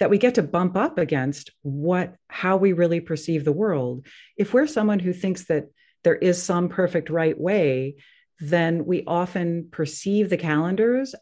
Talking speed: 170 wpm